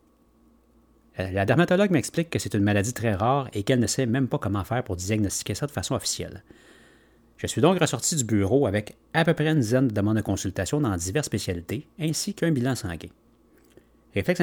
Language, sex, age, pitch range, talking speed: French, male, 30-49, 100-145 Hz, 195 wpm